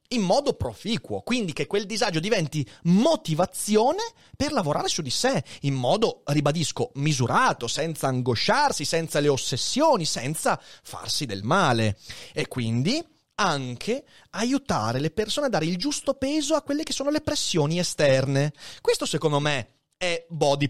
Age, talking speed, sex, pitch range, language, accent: 30-49, 145 wpm, male, 130-215 Hz, Italian, native